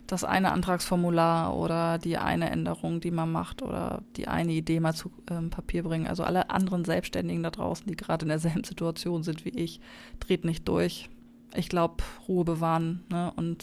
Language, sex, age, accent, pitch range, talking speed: German, female, 20-39, German, 165-180 Hz, 185 wpm